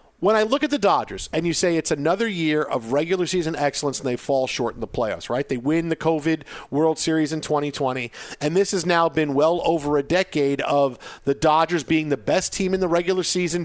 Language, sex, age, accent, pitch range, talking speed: English, male, 40-59, American, 150-185 Hz, 230 wpm